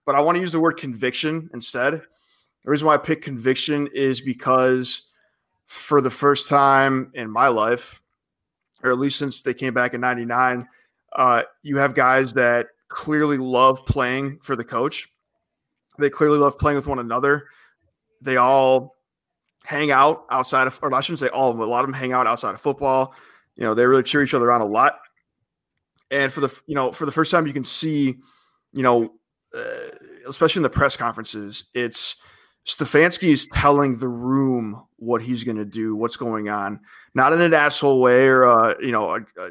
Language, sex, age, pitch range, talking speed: English, male, 20-39, 125-145 Hz, 195 wpm